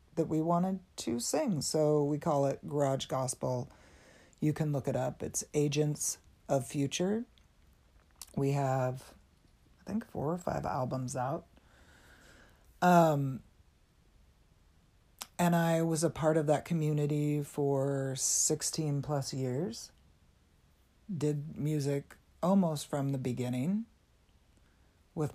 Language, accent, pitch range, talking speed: English, American, 125-150 Hz, 115 wpm